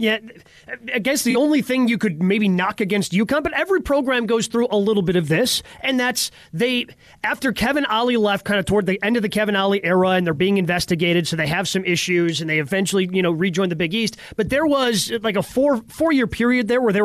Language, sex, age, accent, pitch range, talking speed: English, male, 30-49, American, 190-240 Hz, 245 wpm